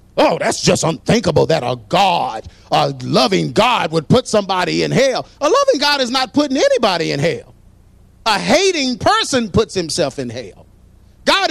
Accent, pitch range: American, 180-265 Hz